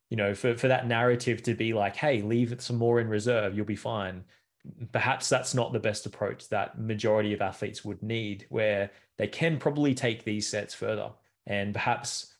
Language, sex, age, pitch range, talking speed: English, male, 20-39, 105-125 Hz, 200 wpm